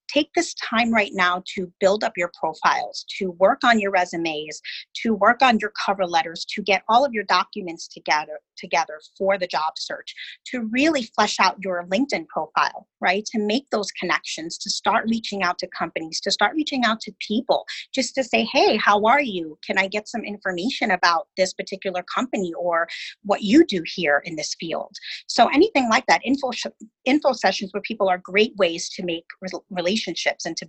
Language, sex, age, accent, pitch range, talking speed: English, female, 30-49, American, 180-235 Hz, 195 wpm